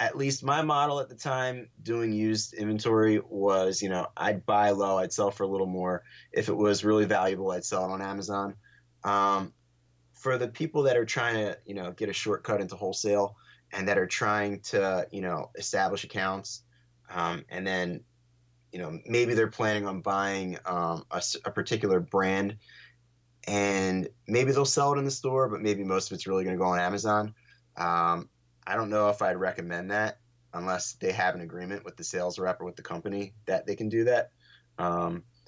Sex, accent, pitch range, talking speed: male, American, 90-120 Hz, 200 wpm